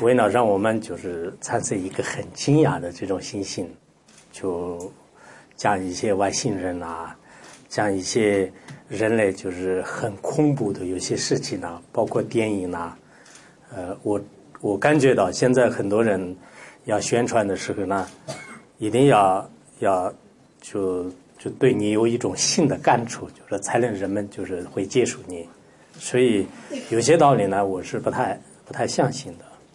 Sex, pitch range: male, 95-120 Hz